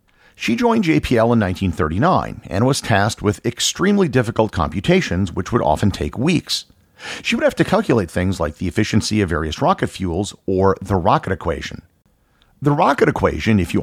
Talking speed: 170 wpm